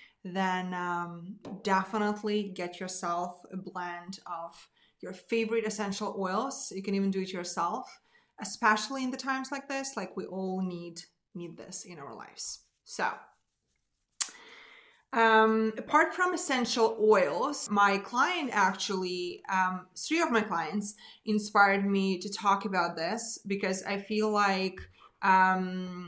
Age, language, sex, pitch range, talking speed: 20-39, English, female, 185-225 Hz, 135 wpm